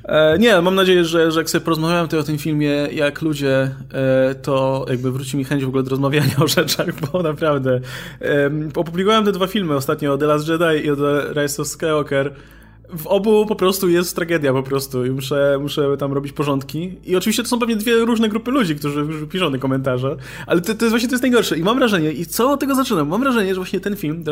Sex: male